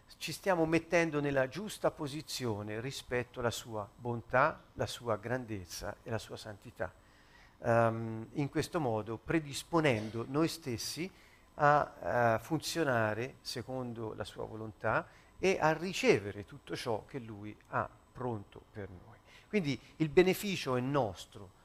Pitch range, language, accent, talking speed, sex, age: 105-135 Hz, Italian, native, 130 wpm, male, 50-69